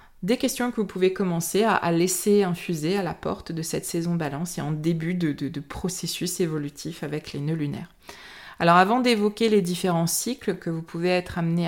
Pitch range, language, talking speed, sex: 160-195 Hz, French, 200 wpm, female